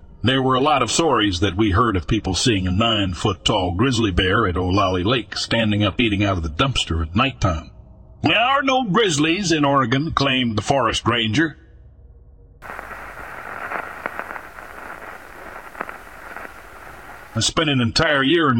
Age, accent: 60-79, American